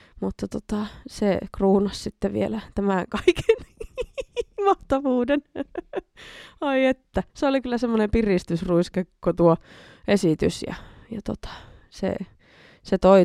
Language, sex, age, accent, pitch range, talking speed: Finnish, female, 20-39, native, 170-205 Hz, 110 wpm